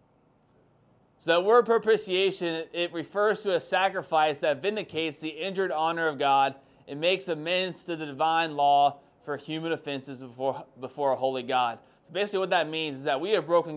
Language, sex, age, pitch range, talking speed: English, male, 20-39, 140-180 Hz, 180 wpm